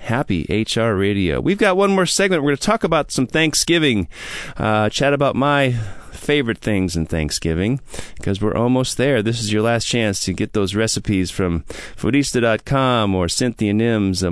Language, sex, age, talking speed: English, male, 30-49, 170 wpm